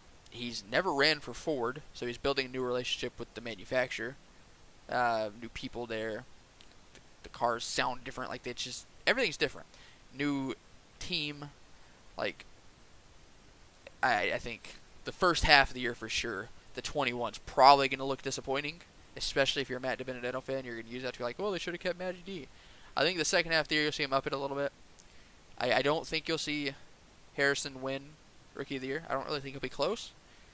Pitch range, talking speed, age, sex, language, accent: 120-150 Hz, 210 wpm, 20-39, male, English, American